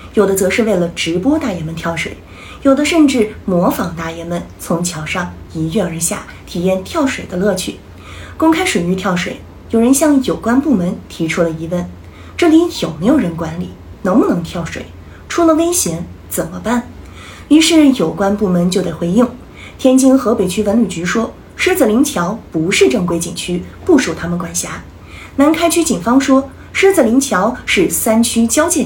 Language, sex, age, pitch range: Chinese, female, 30-49, 180-275 Hz